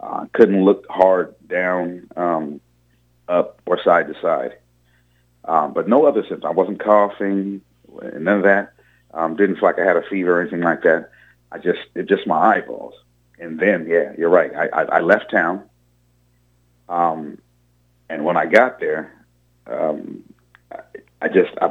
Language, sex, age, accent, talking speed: English, male, 40-59, American, 170 wpm